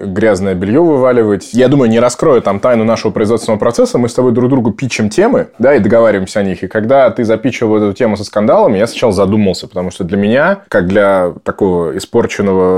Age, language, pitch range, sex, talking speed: 20-39, Russian, 100-120 Hz, male, 205 wpm